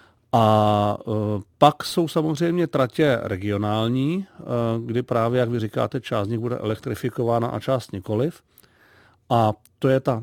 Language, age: Czech, 40-59